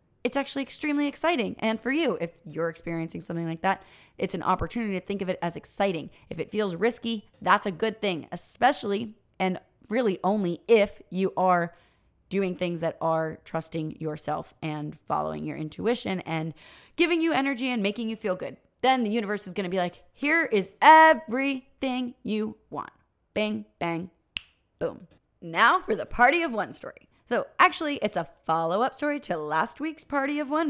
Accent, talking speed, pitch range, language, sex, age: American, 180 wpm, 170-245 Hz, English, female, 30-49